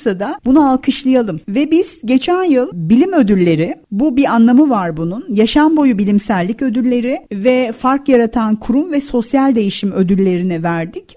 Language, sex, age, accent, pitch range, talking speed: Turkish, female, 40-59, native, 215-280 Hz, 145 wpm